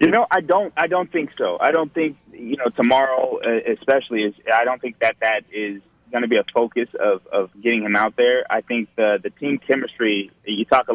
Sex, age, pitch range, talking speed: male, 20-39, 100-120 Hz, 230 wpm